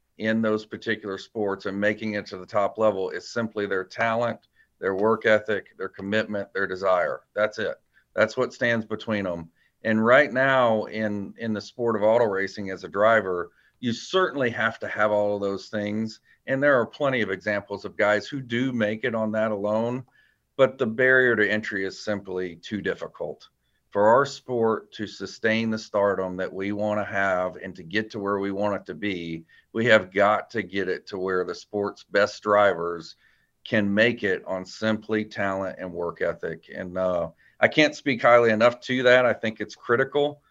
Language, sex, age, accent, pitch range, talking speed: English, male, 40-59, American, 100-120 Hz, 195 wpm